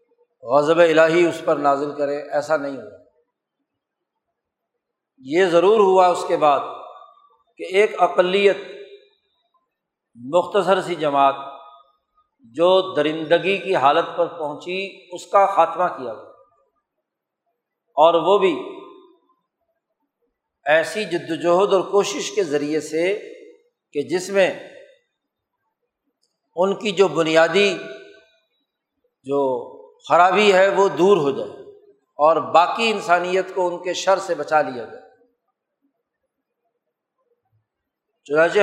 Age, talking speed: 50-69, 105 wpm